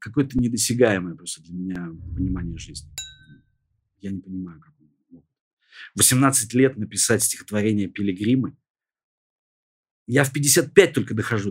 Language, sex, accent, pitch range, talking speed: Russian, male, native, 105-135 Hz, 110 wpm